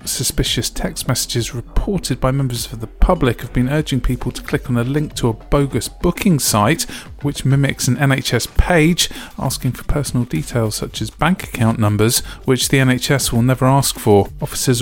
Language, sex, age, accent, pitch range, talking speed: English, male, 40-59, British, 120-140 Hz, 180 wpm